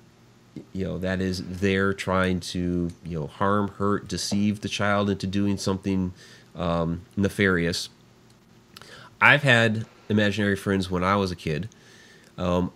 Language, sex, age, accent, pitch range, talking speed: English, male, 30-49, American, 90-110 Hz, 135 wpm